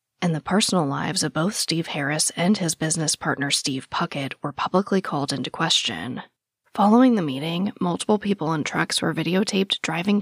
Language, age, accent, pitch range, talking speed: English, 20-39, American, 150-195 Hz, 170 wpm